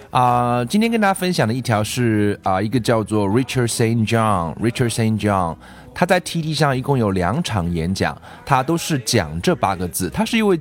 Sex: male